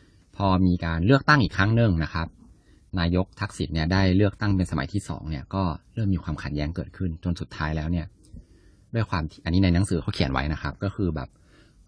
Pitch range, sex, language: 85-105 Hz, male, Thai